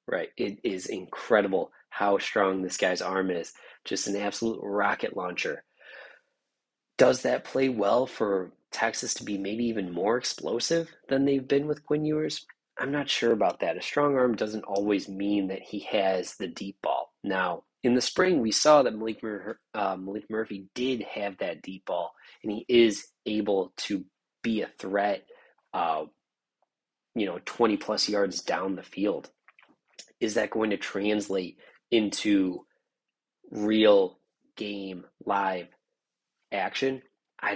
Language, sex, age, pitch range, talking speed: English, male, 20-39, 100-115 Hz, 150 wpm